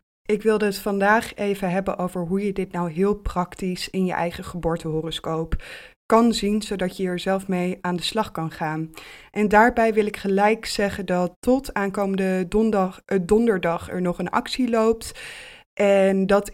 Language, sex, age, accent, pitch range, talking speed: Dutch, female, 20-39, Dutch, 180-210 Hz, 165 wpm